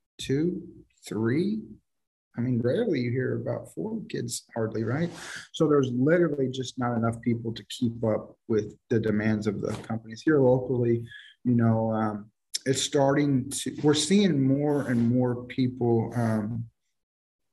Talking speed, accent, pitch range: 145 wpm, American, 110-120 Hz